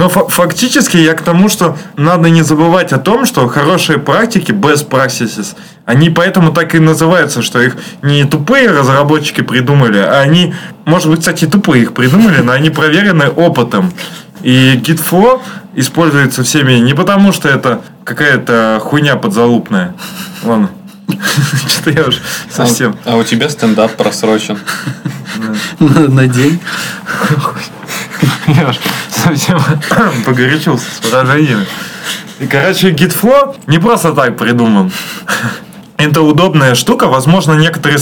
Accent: native